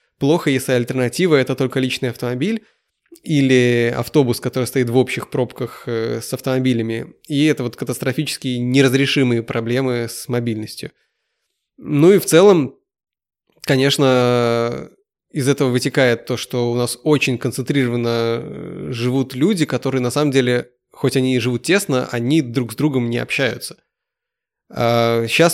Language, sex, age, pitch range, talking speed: Russian, male, 20-39, 120-140 Hz, 135 wpm